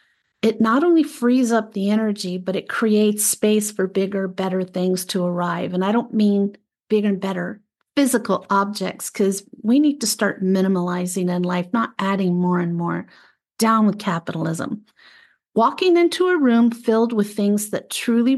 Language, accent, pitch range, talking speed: English, American, 190-230 Hz, 165 wpm